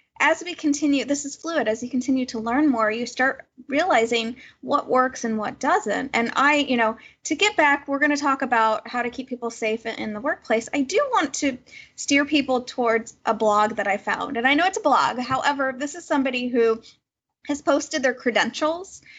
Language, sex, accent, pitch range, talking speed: English, female, American, 225-285 Hz, 210 wpm